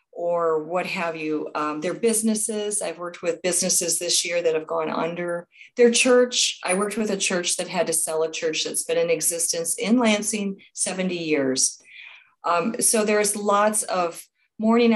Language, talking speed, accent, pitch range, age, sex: English, 175 wpm, American, 170-230 Hz, 40-59, female